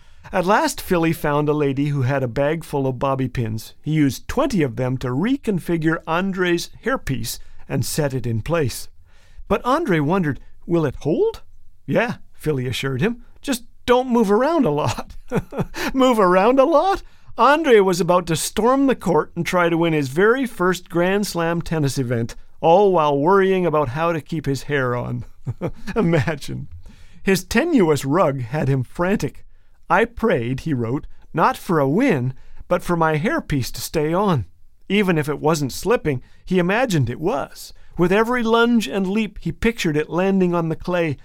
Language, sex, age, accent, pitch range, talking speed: English, male, 50-69, American, 140-210 Hz, 175 wpm